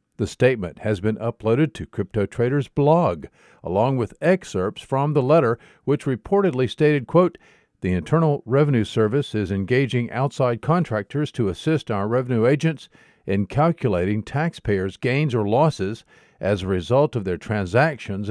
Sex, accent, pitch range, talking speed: male, American, 110-145 Hz, 140 wpm